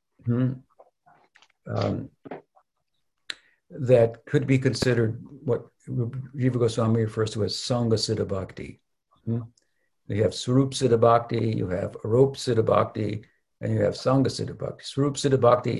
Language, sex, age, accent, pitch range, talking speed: English, male, 60-79, American, 110-130 Hz, 135 wpm